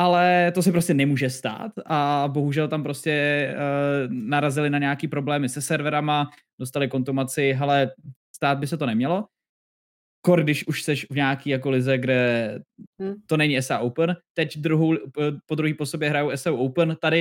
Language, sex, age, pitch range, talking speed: Czech, male, 20-39, 135-155 Hz, 165 wpm